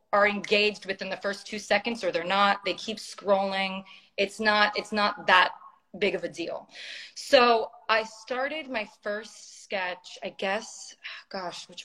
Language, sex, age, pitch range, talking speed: Greek, female, 20-39, 200-255 Hz, 160 wpm